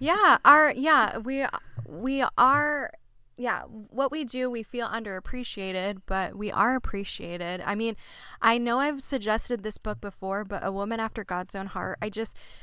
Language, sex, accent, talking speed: English, female, American, 165 wpm